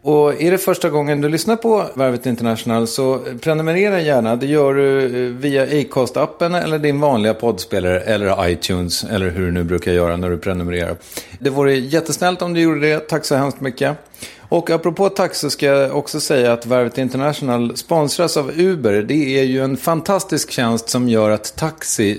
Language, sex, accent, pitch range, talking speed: English, male, Swedish, 110-150 Hz, 185 wpm